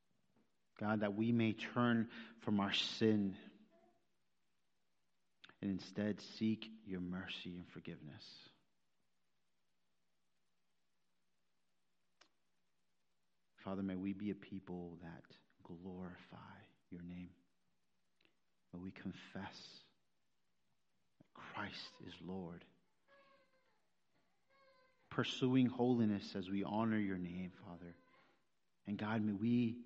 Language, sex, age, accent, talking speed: English, male, 40-59, American, 90 wpm